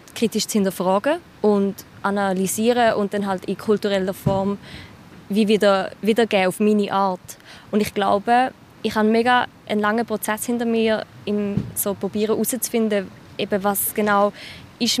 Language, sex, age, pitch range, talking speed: German, female, 20-39, 195-220 Hz, 140 wpm